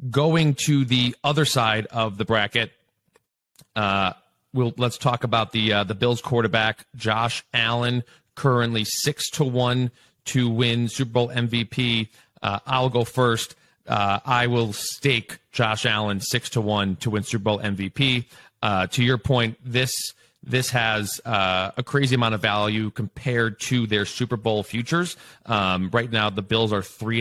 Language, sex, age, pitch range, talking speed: English, male, 30-49, 105-130 Hz, 160 wpm